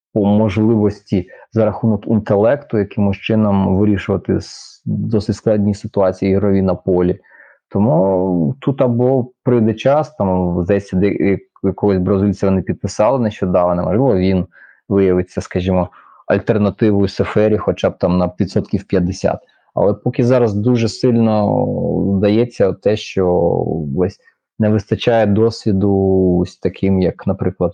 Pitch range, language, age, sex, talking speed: 95-115 Hz, Ukrainian, 20-39, male, 115 wpm